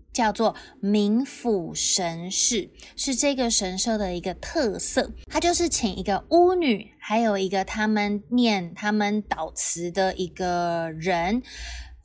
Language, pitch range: Chinese, 190-250 Hz